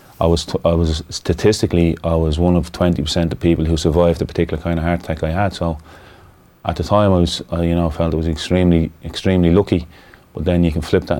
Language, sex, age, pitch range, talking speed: English, male, 30-49, 80-90 Hz, 240 wpm